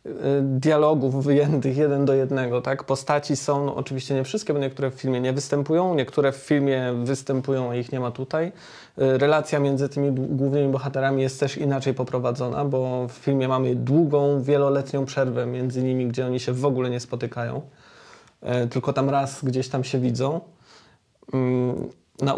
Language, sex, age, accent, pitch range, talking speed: Polish, male, 20-39, native, 130-150 Hz, 155 wpm